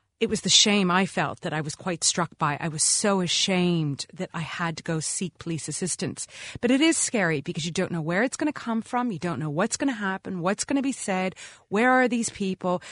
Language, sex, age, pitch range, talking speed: English, female, 30-49, 165-220 Hz, 250 wpm